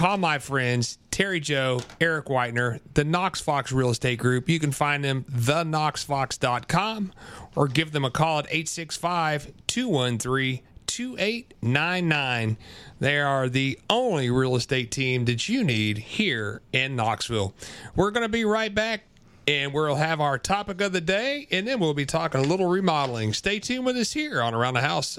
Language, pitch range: English, 125-170 Hz